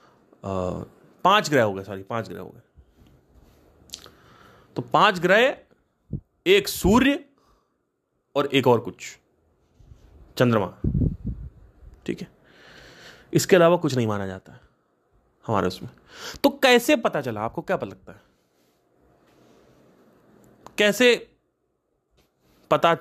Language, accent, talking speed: Hindi, native, 105 wpm